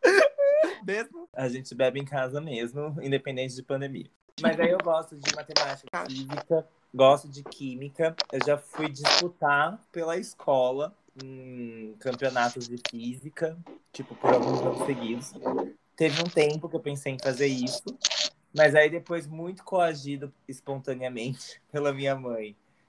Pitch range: 130-165 Hz